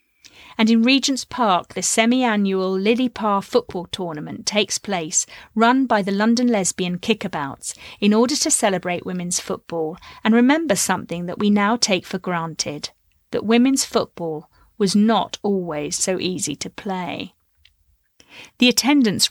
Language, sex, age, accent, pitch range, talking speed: English, female, 40-59, British, 180-225 Hz, 140 wpm